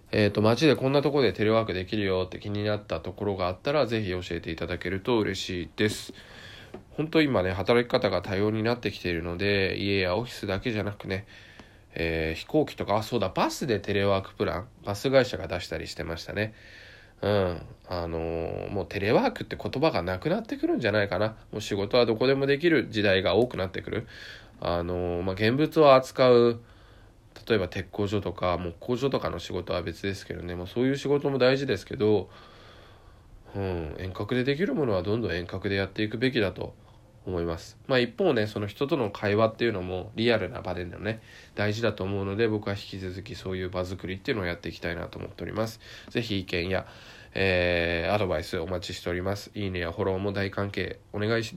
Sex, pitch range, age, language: male, 90-115 Hz, 20-39, Japanese